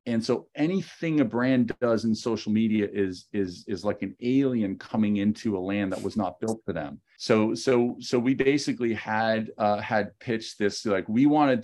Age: 40-59